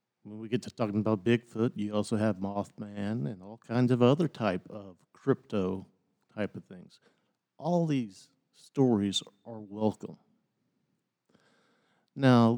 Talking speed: 135 wpm